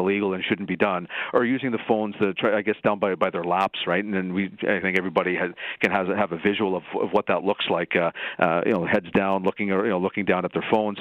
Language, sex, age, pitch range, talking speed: English, male, 50-69, 95-115 Hz, 295 wpm